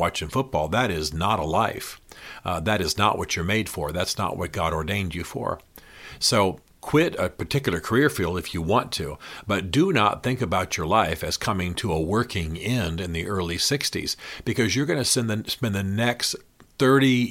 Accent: American